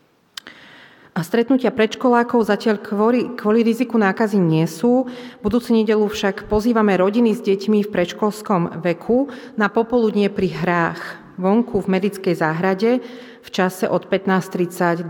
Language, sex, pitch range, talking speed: Slovak, female, 175-215 Hz, 130 wpm